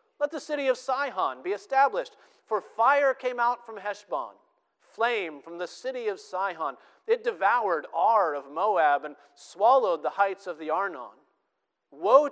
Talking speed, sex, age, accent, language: 155 wpm, male, 50-69, American, English